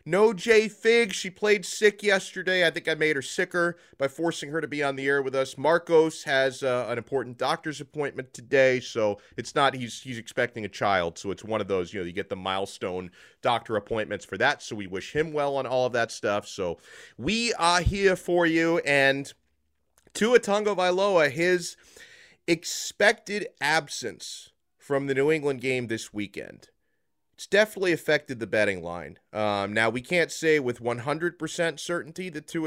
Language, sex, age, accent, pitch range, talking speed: English, male, 30-49, American, 115-165 Hz, 185 wpm